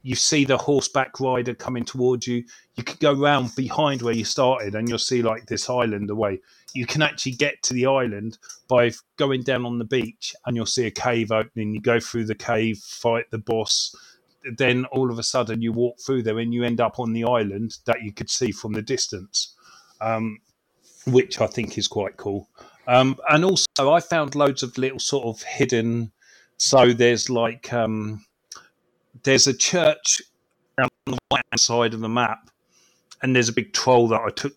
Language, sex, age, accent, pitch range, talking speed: English, male, 30-49, British, 115-130 Hz, 200 wpm